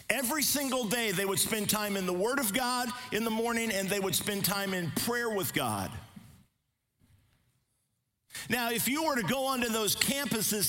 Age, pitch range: 50-69, 160-235 Hz